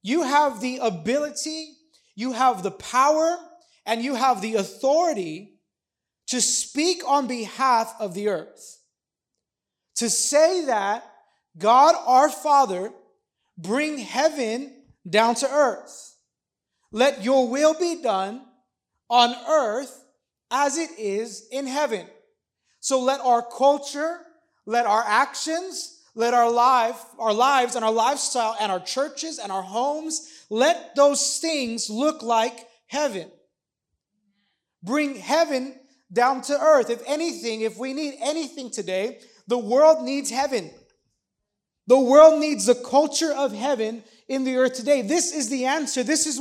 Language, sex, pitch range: English, male, 230-300 Hz